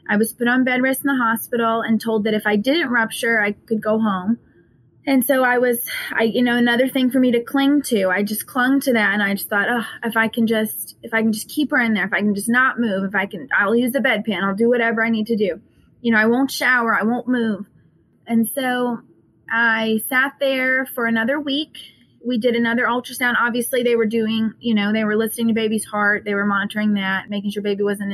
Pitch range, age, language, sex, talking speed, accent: 210-240 Hz, 20-39, English, female, 245 wpm, American